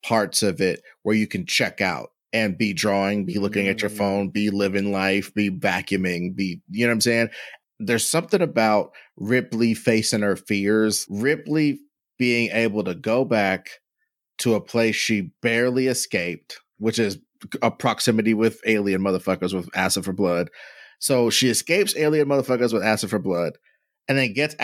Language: English